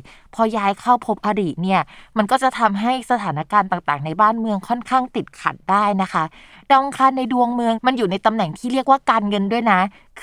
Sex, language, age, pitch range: female, Thai, 20-39, 175-240 Hz